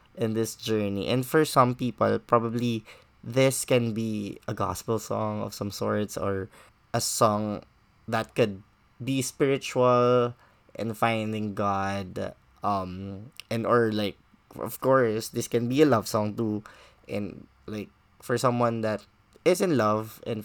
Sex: male